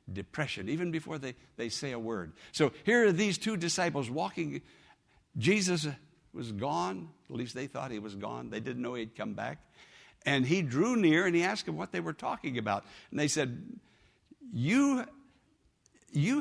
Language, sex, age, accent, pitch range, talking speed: English, male, 60-79, American, 130-205 Hz, 180 wpm